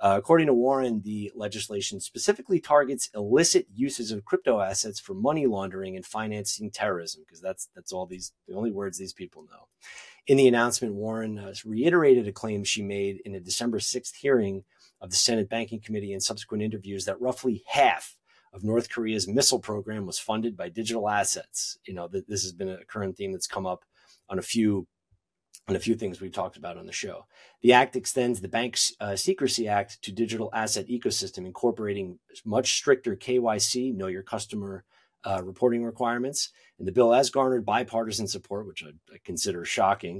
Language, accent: English, American